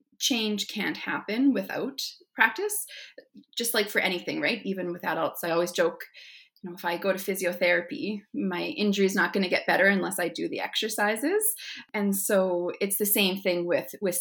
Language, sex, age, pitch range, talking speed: English, female, 30-49, 175-230 Hz, 185 wpm